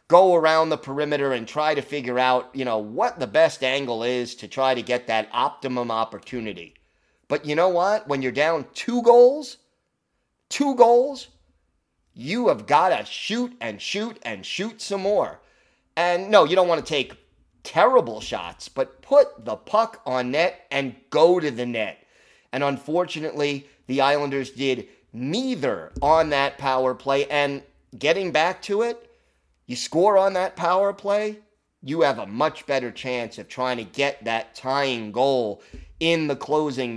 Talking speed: 165 wpm